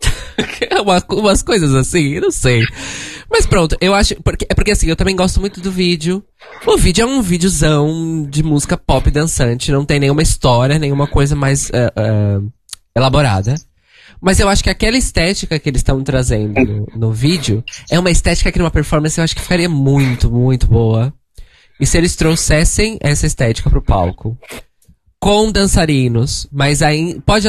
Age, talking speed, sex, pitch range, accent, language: 20-39, 170 wpm, male, 130-180 Hz, Brazilian, Portuguese